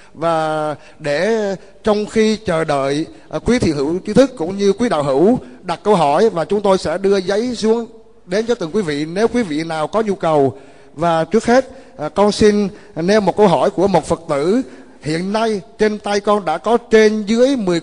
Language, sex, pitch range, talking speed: Vietnamese, male, 165-220 Hz, 205 wpm